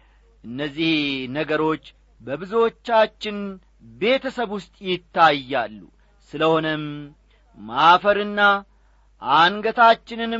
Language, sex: Amharic, male